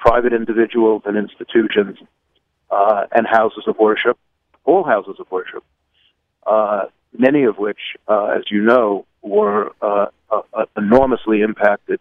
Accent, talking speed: American, 135 wpm